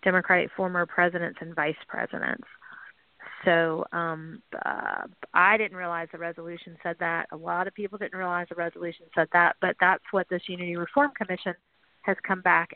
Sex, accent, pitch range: female, American, 170-195 Hz